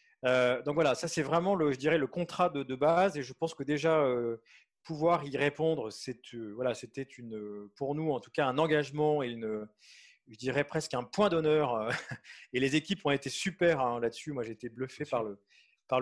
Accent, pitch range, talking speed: French, 130-160 Hz, 215 wpm